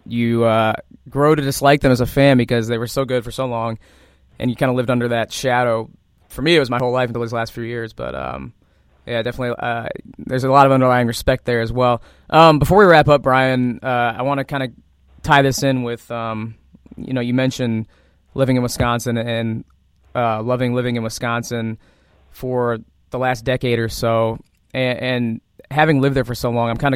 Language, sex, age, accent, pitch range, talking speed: English, male, 20-39, American, 115-130 Hz, 215 wpm